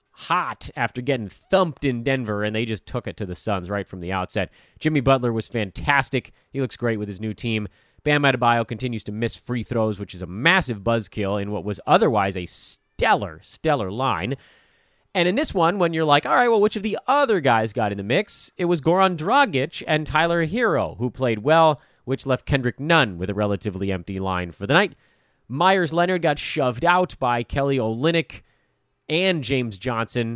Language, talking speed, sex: English, 200 wpm, male